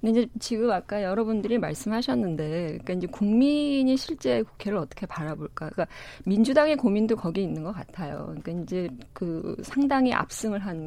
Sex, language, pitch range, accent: female, Korean, 170-245 Hz, native